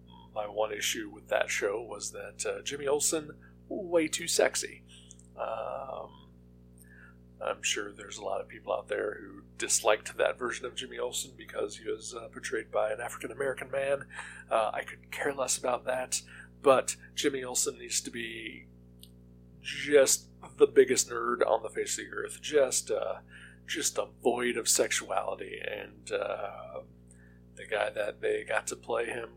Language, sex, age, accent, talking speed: English, male, 40-59, American, 165 wpm